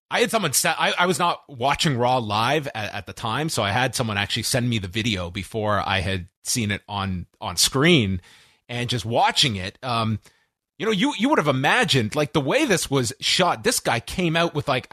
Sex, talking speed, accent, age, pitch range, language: male, 225 wpm, American, 30-49, 110-155 Hz, English